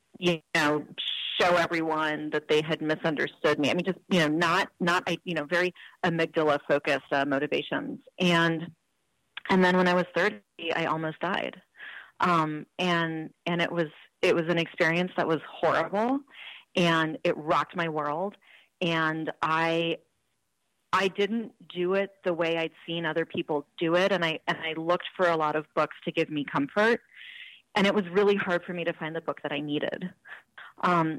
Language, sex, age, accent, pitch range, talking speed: English, female, 30-49, American, 160-190 Hz, 180 wpm